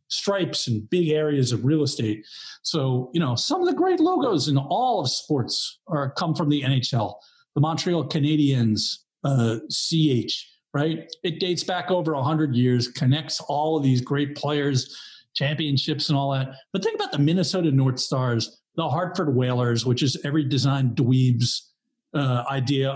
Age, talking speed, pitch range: 50-69, 165 wpm, 130-165 Hz